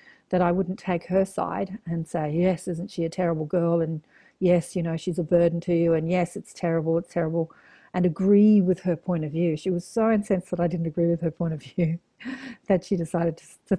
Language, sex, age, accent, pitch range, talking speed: English, female, 40-59, Australian, 165-195 Hz, 235 wpm